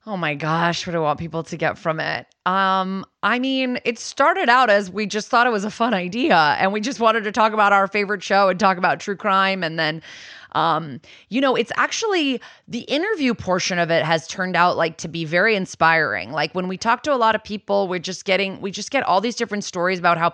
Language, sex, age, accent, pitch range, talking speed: English, female, 30-49, American, 170-225 Hz, 245 wpm